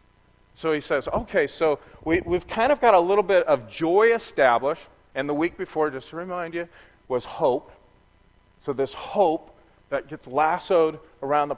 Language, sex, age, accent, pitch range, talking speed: English, male, 40-59, American, 125-155 Hz, 170 wpm